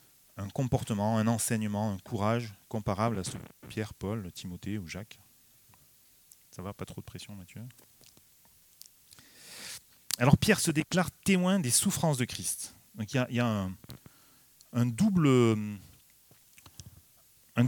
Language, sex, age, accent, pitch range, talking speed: French, male, 30-49, French, 105-135 Hz, 140 wpm